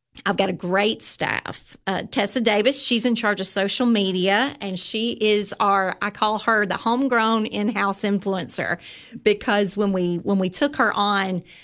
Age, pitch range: 40-59, 190-225 Hz